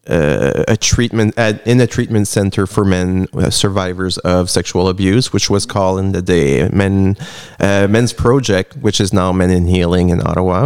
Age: 30-49